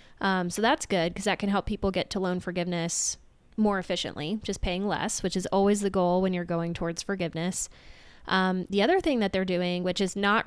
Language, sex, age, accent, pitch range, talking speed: English, female, 20-39, American, 175-205 Hz, 220 wpm